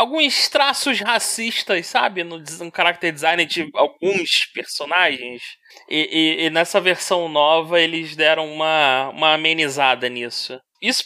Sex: male